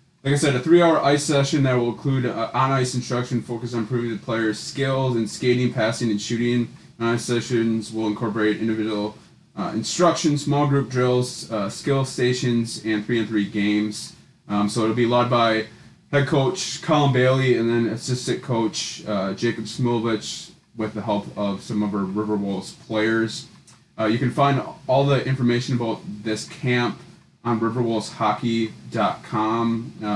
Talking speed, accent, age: 160 wpm, American, 20-39